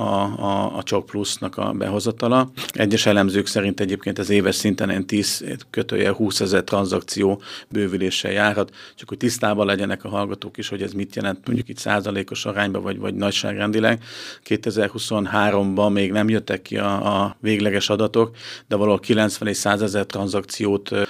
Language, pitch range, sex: Hungarian, 100-110 Hz, male